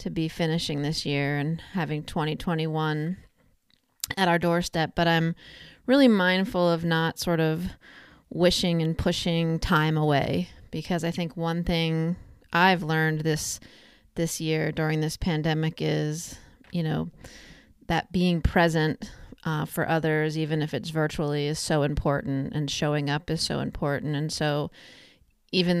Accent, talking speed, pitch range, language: American, 145 wpm, 155-175 Hz, English